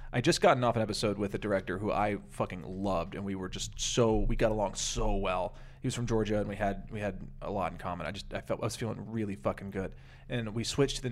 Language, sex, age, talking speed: English, male, 30-49, 275 wpm